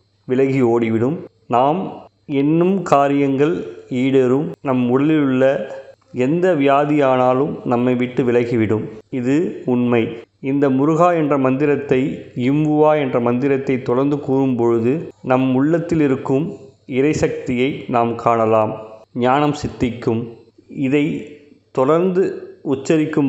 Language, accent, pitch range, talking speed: Tamil, native, 120-145 Hz, 95 wpm